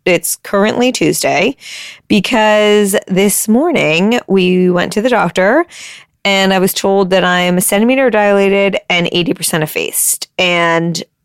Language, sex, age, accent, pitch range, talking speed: English, female, 20-39, American, 175-220 Hz, 135 wpm